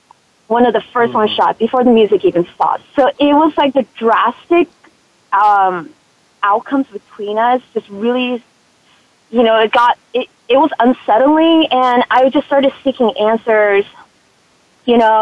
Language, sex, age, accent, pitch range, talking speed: English, female, 20-39, American, 205-245 Hz, 155 wpm